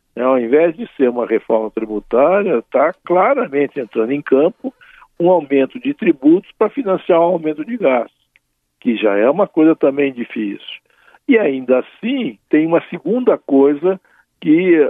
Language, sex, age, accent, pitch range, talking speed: Portuguese, male, 60-79, Brazilian, 120-195 Hz, 155 wpm